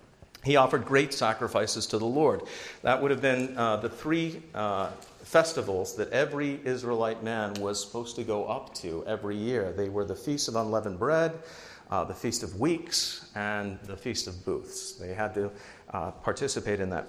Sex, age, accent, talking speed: male, 50-69, American, 185 wpm